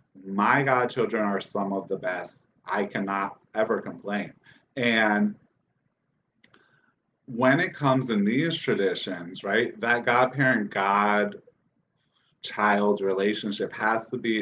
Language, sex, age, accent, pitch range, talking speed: English, male, 30-49, American, 105-125 Hz, 105 wpm